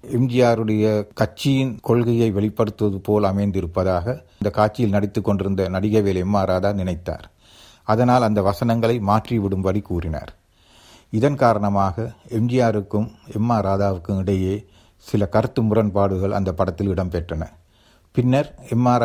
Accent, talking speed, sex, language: native, 100 wpm, male, Tamil